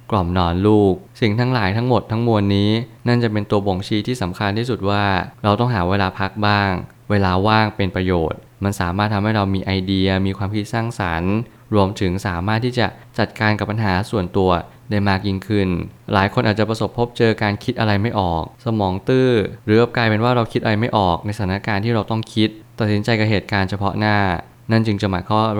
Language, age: Thai, 20-39